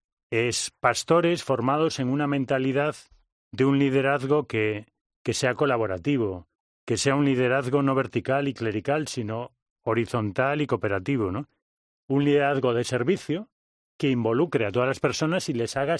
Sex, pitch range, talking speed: male, 115-150 Hz, 145 wpm